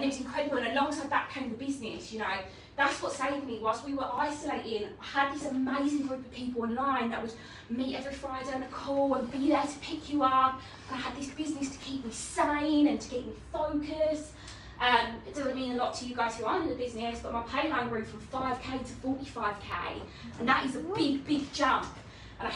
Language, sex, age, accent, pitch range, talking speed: English, female, 20-39, British, 245-285 Hz, 235 wpm